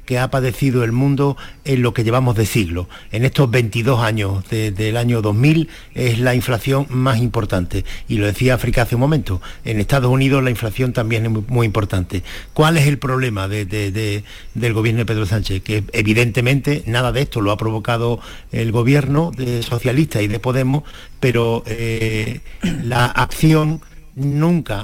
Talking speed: 165 wpm